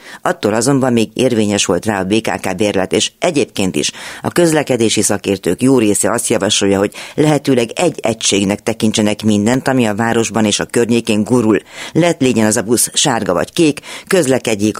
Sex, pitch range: female, 105-135 Hz